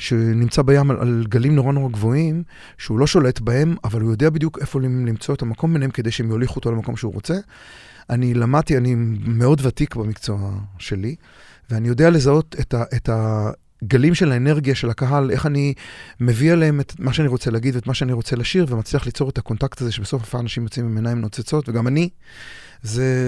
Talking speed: 185 wpm